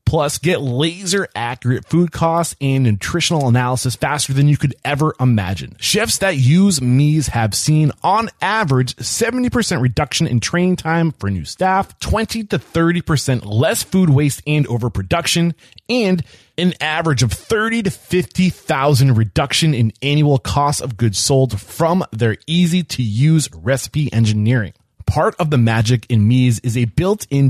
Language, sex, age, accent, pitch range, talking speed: English, male, 30-49, American, 120-170 Hz, 150 wpm